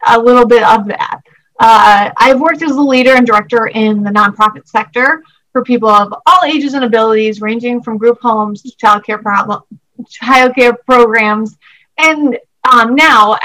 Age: 30-49